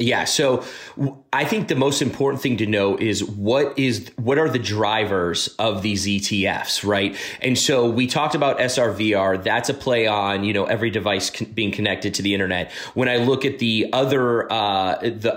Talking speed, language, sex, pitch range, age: 185 wpm, English, male, 110-140 Hz, 30-49